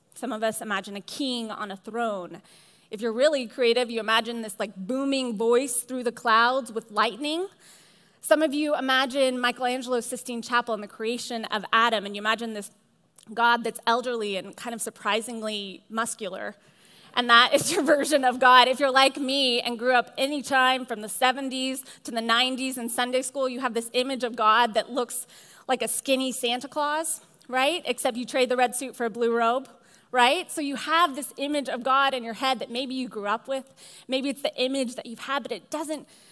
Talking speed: 205 wpm